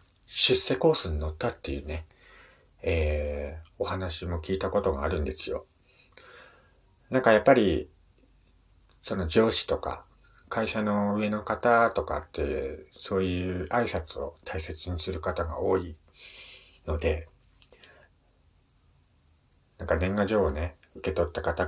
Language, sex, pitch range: Japanese, male, 80-105 Hz